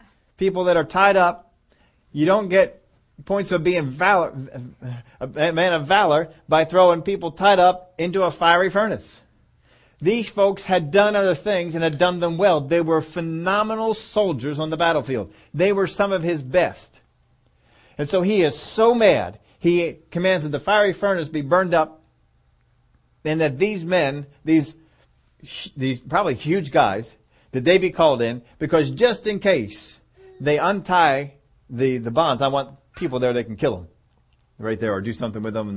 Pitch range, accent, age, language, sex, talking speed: 125-180 Hz, American, 40-59, English, male, 175 wpm